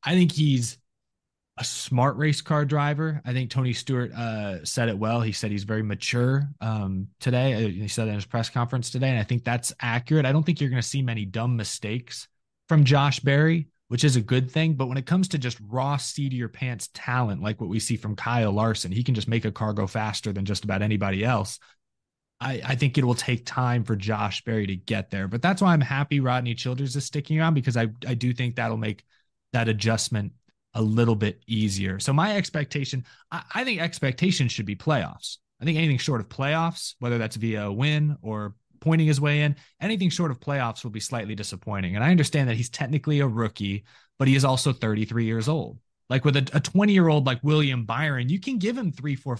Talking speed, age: 225 wpm, 20-39